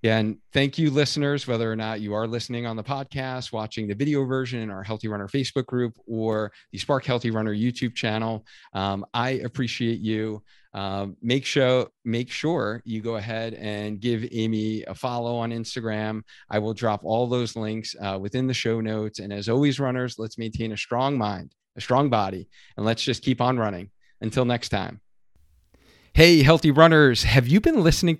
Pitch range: 110-130 Hz